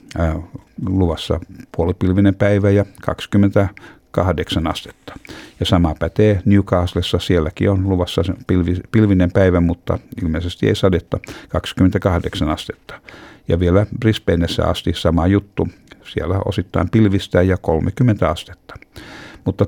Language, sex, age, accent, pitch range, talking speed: Finnish, male, 60-79, native, 85-100 Hz, 110 wpm